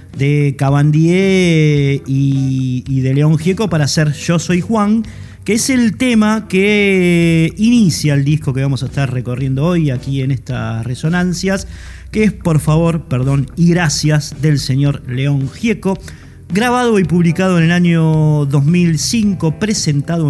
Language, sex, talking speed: Spanish, male, 145 wpm